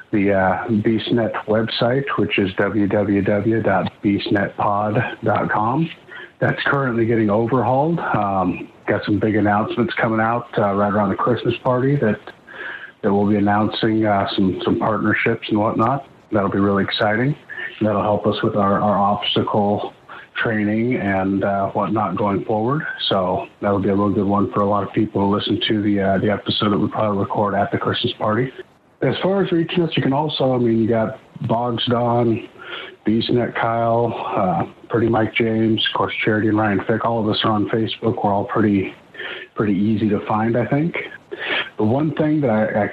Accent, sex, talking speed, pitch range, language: American, male, 175 wpm, 100-120 Hz, English